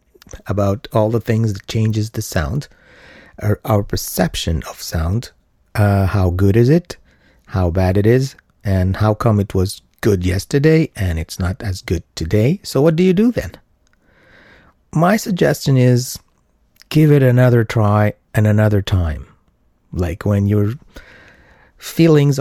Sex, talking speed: male, 145 wpm